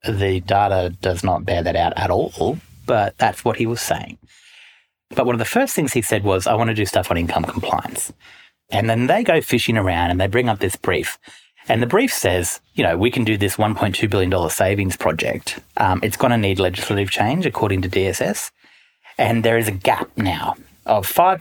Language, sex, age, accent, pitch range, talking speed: English, male, 30-49, Australian, 95-120 Hz, 215 wpm